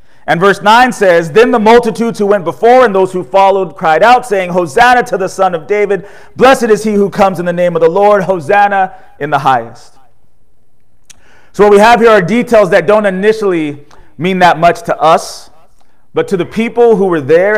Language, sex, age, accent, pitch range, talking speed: English, male, 30-49, American, 165-215 Hz, 205 wpm